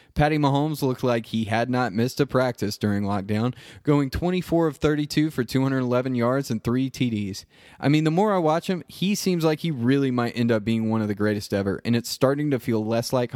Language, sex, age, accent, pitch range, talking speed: English, male, 20-39, American, 115-140 Hz, 225 wpm